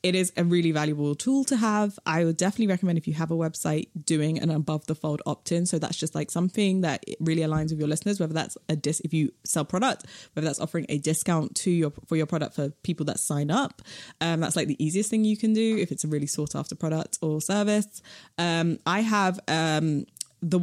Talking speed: 235 wpm